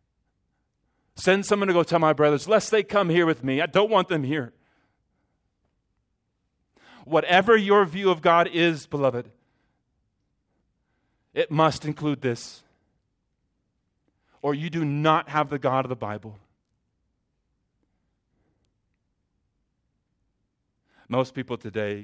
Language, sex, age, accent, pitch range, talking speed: English, male, 30-49, American, 115-155 Hz, 115 wpm